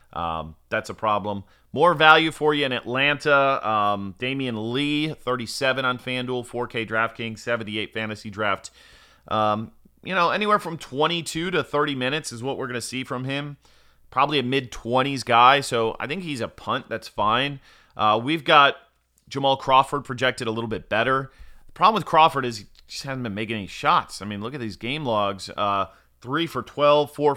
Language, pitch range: English, 105-140 Hz